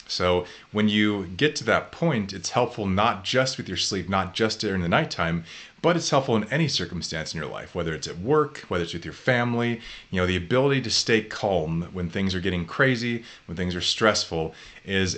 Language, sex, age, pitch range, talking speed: English, male, 30-49, 90-115 Hz, 215 wpm